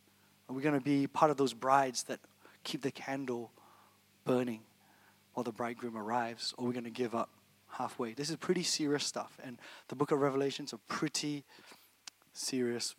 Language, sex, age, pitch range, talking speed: English, male, 20-39, 125-155 Hz, 185 wpm